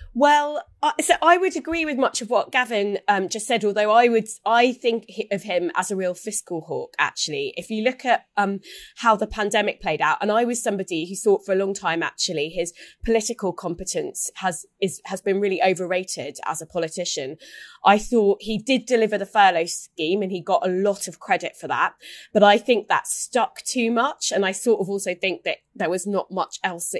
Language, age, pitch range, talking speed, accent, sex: English, 20-39, 180-225 Hz, 210 wpm, British, female